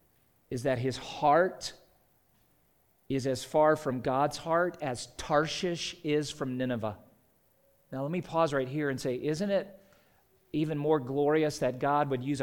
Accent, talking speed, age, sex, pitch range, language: American, 155 wpm, 40-59, male, 130-165 Hz, English